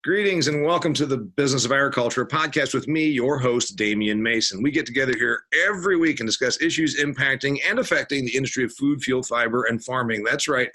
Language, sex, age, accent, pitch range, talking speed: English, male, 50-69, American, 115-155 Hz, 205 wpm